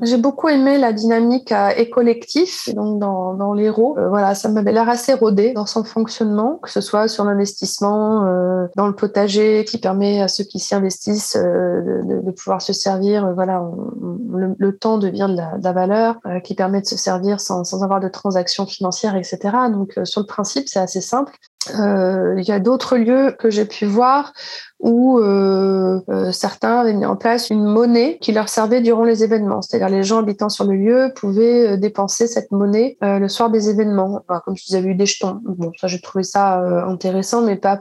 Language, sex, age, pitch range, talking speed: French, female, 20-39, 195-235 Hz, 210 wpm